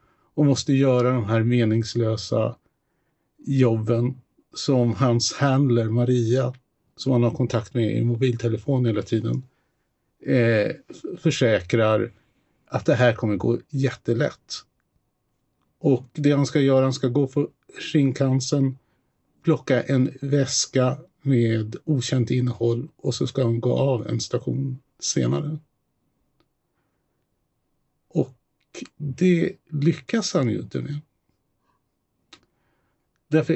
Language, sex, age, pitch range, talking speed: Swedish, male, 50-69, 115-140 Hz, 105 wpm